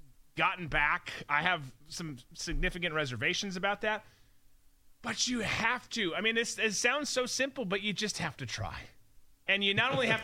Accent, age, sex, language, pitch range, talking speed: American, 30-49, male, English, 130-195 Hz, 175 wpm